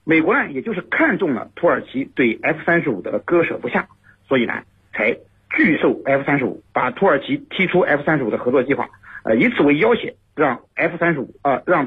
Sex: male